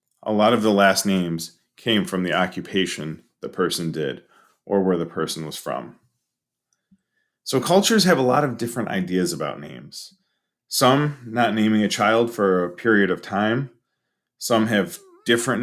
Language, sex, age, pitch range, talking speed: English, male, 30-49, 95-120 Hz, 160 wpm